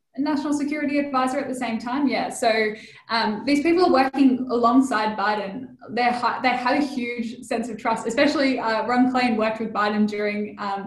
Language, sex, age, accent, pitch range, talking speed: English, female, 10-29, Australian, 210-255 Hz, 175 wpm